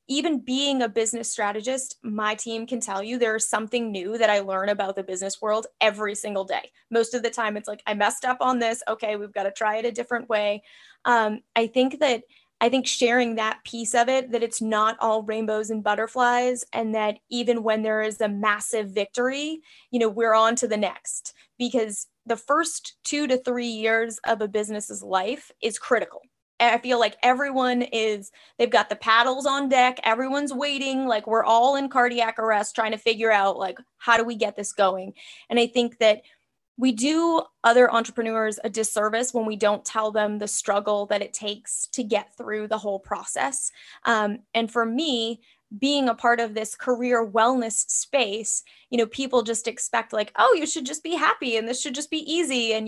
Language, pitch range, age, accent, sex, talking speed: English, 215-250 Hz, 20-39, American, female, 200 wpm